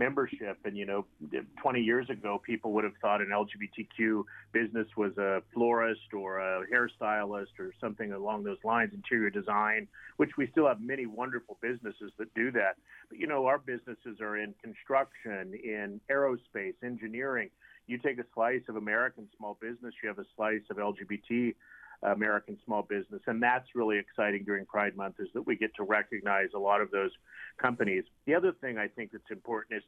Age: 40-59